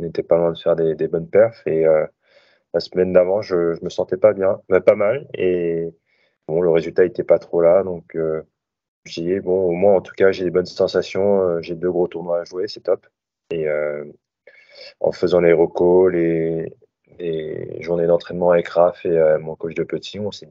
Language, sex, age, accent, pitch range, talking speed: French, male, 30-49, French, 80-100 Hz, 215 wpm